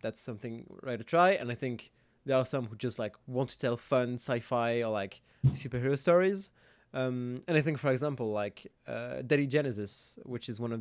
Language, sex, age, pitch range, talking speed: English, male, 20-39, 120-155 Hz, 205 wpm